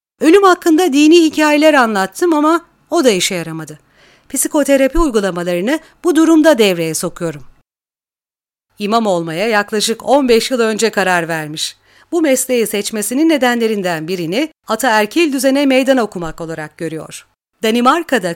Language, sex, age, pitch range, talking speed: Turkish, female, 40-59, 205-310 Hz, 120 wpm